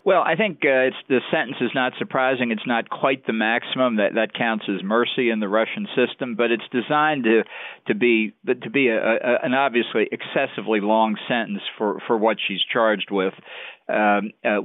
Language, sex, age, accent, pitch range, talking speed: English, male, 50-69, American, 100-125 Hz, 195 wpm